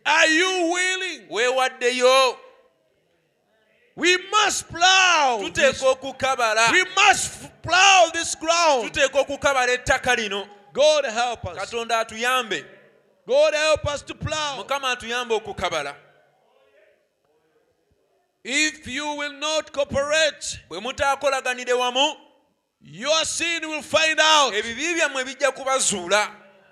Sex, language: male, English